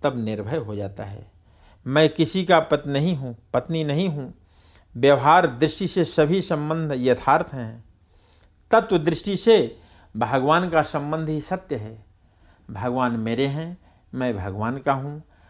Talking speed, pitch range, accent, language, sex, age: 145 wpm, 105-155 Hz, native, Hindi, male, 60-79